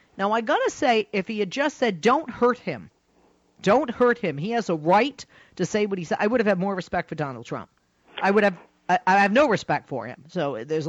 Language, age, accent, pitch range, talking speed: English, 40-59, American, 165-250 Hz, 255 wpm